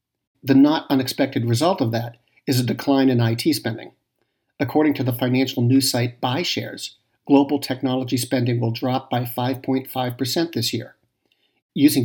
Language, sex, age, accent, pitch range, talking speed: English, male, 50-69, American, 120-145 Hz, 145 wpm